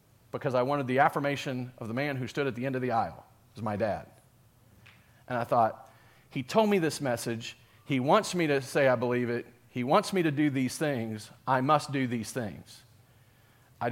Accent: American